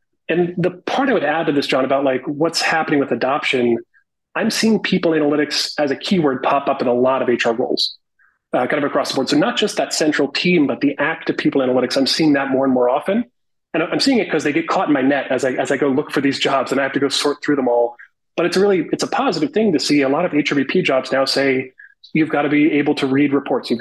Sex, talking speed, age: male, 275 wpm, 30-49